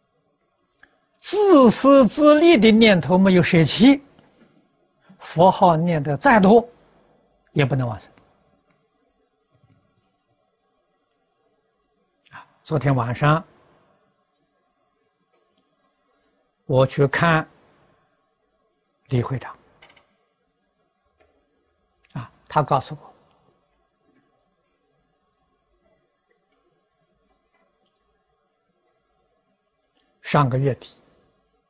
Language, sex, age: Chinese, male, 60-79